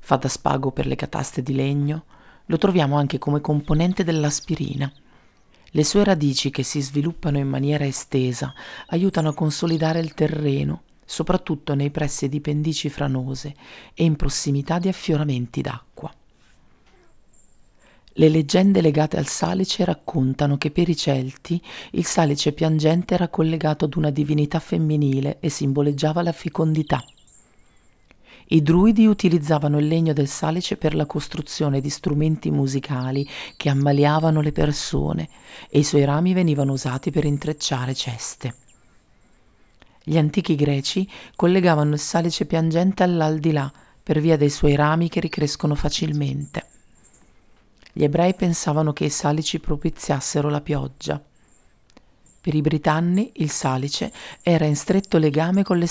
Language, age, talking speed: Italian, 40-59, 135 wpm